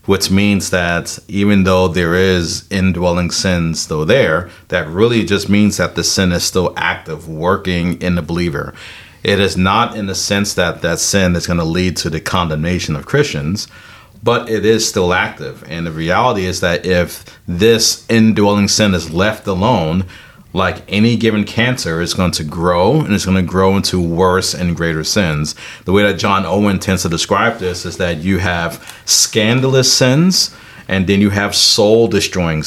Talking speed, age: 180 wpm, 40-59